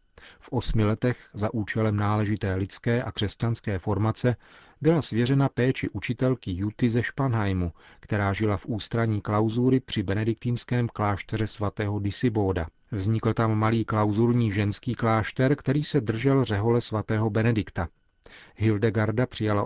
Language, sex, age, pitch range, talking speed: Czech, male, 40-59, 100-120 Hz, 125 wpm